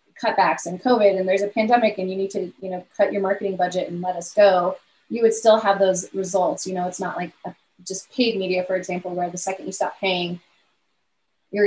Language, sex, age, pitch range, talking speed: English, female, 20-39, 180-210 Hz, 230 wpm